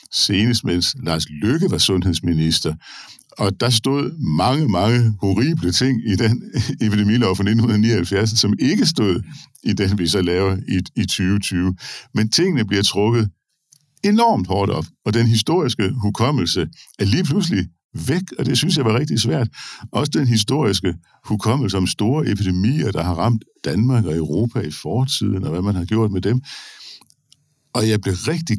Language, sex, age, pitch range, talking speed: Danish, male, 60-79, 90-115 Hz, 160 wpm